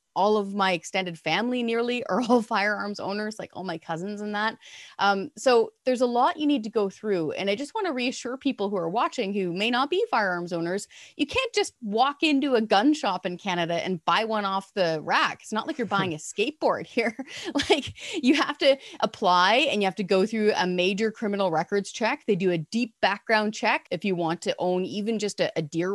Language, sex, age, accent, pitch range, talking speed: English, female, 30-49, American, 185-245 Hz, 225 wpm